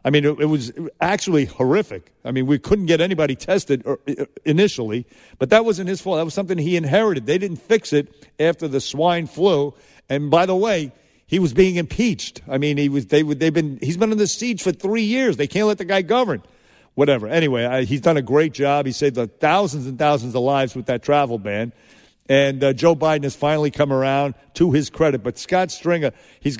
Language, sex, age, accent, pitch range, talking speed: English, male, 50-69, American, 135-180 Hz, 210 wpm